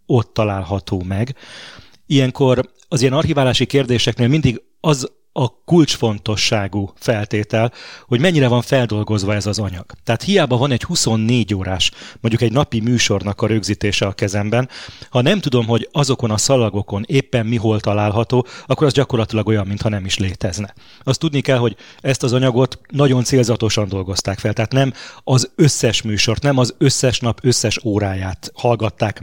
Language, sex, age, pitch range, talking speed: Hungarian, male, 30-49, 105-125 Hz, 155 wpm